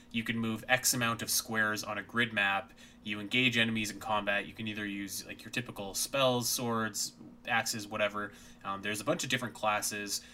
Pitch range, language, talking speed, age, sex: 110-125 Hz, English, 195 wpm, 20-39, male